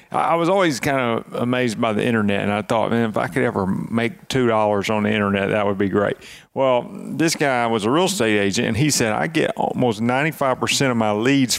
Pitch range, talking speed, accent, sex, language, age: 110-130 Hz, 230 wpm, American, male, English, 40-59